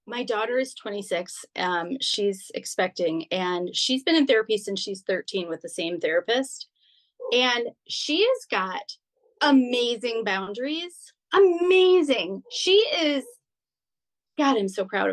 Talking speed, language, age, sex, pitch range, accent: 125 wpm, English, 30-49, female, 195-275 Hz, American